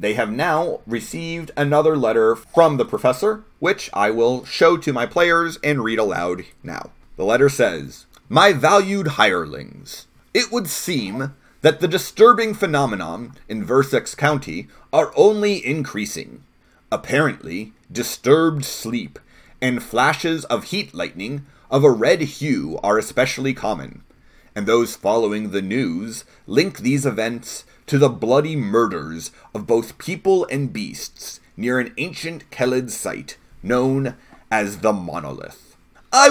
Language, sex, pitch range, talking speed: English, male, 115-165 Hz, 135 wpm